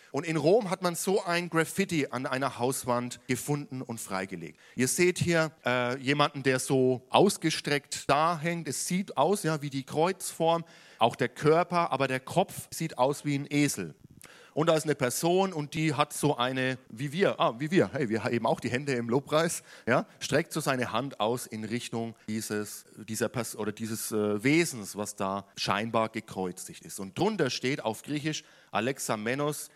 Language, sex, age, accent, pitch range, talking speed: German, male, 40-59, German, 110-150 Hz, 185 wpm